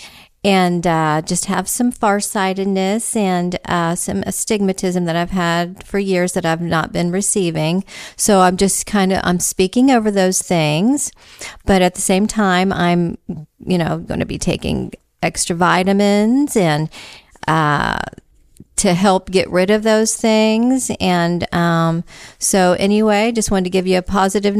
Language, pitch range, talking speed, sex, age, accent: English, 180-215 Hz, 155 wpm, female, 40-59, American